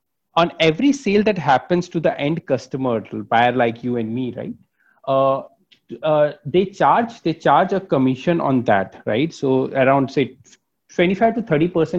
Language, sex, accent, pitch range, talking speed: English, male, Indian, 125-175 Hz, 155 wpm